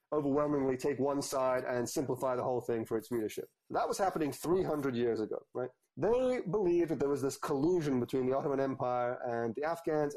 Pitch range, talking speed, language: 125-170 Hz, 195 wpm, English